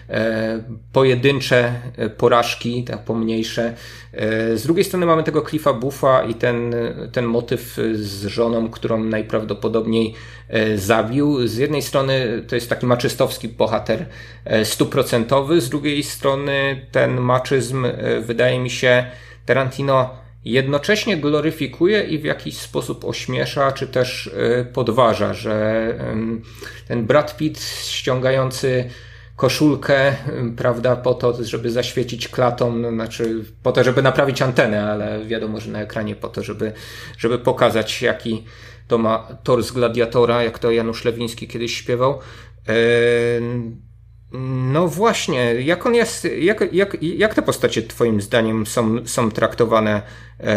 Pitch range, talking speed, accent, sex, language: 115-135 Hz, 125 wpm, native, male, Polish